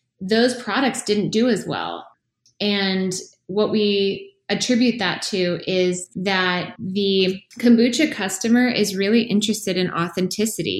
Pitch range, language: 170-210 Hz, English